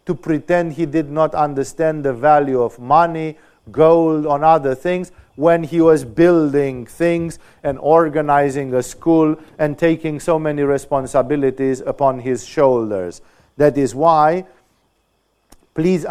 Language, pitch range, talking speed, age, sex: English, 140-170 Hz, 125 wpm, 50-69, male